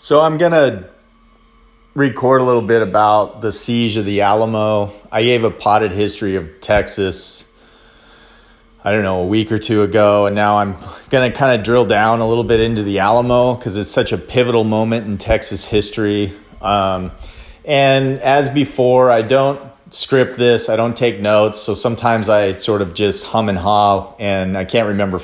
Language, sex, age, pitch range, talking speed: English, male, 30-49, 100-125 Hz, 180 wpm